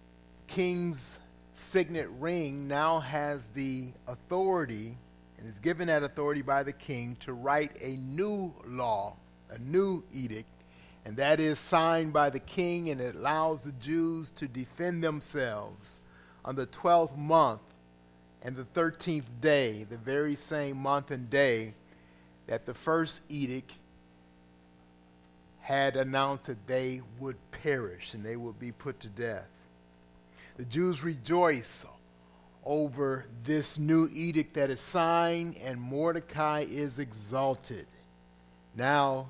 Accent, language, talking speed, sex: American, English, 130 wpm, male